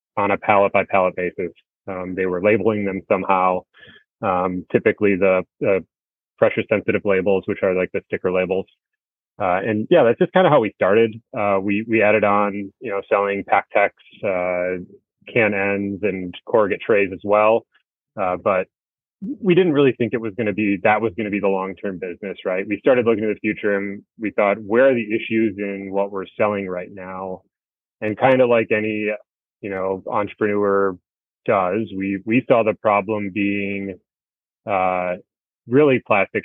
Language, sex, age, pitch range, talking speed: English, male, 20-39, 95-110 Hz, 170 wpm